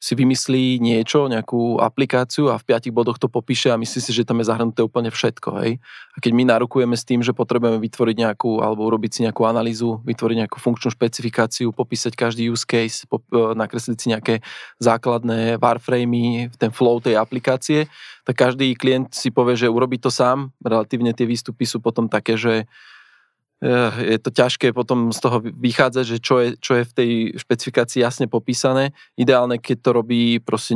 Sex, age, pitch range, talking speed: male, 20-39, 115-125 Hz, 180 wpm